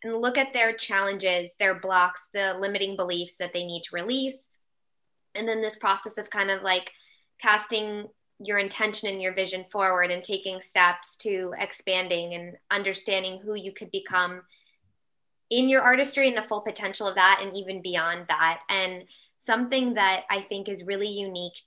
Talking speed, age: 170 wpm, 20-39